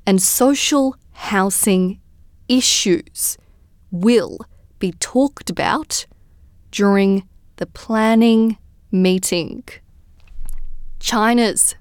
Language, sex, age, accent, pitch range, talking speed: English, female, 20-39, Australian, 175-230 Hz, 65 wpm